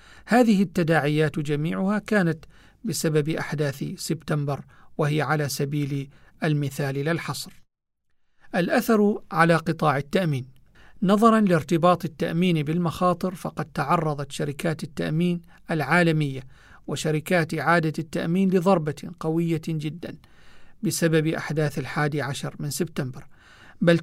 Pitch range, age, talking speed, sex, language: 150-175 Hz, 50-69, 95 wpm, male, Arabic